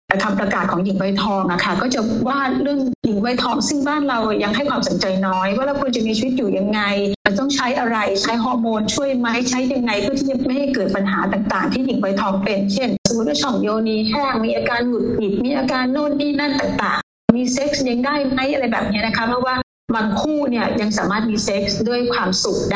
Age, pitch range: 30-49, 200-250 Hz